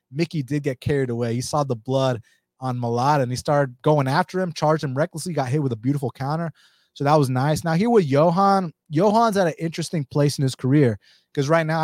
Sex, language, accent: male, English, American